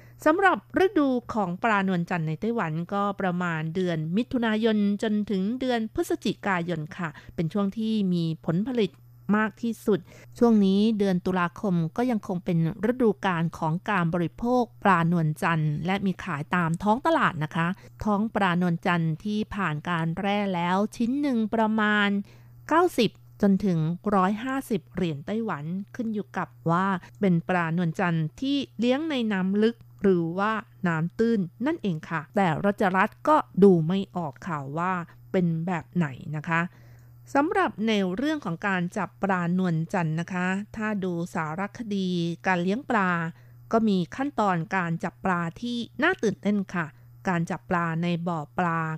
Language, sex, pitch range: Thai, female, 170-215 Hz